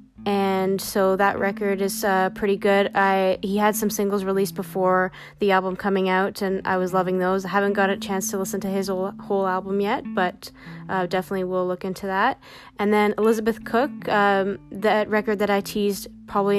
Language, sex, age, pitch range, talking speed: English, female, 20-39, 190-215 Hz, 200 wpm